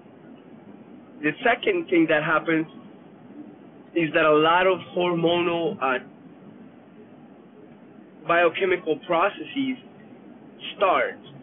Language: English